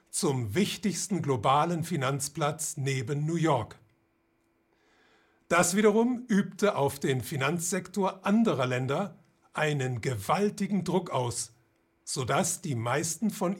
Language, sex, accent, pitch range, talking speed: German, male, German, 135-185 Hz, 100 wpm